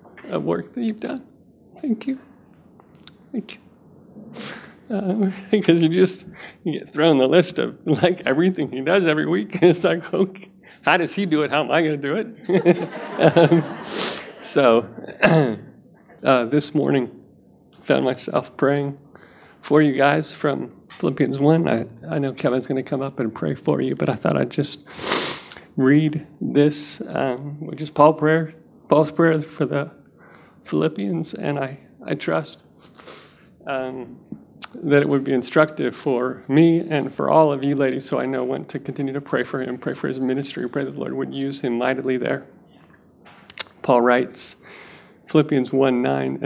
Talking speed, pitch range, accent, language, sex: 165 wpm, 135-165 Hz, American, English, male